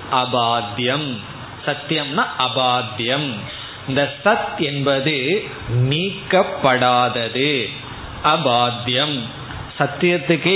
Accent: native